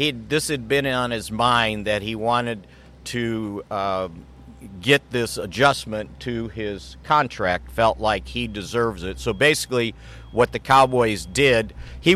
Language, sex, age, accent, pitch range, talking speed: English, male, 50-69, American, 95-125 Hz, 145 wpm